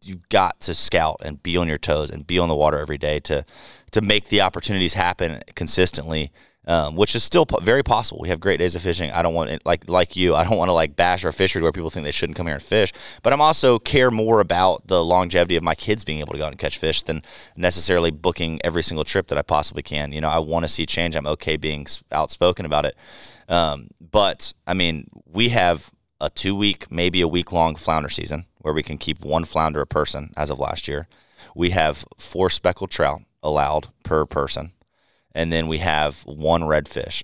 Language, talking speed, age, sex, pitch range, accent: English, 235 wpm, 30-49, male, 75-90 Hz, American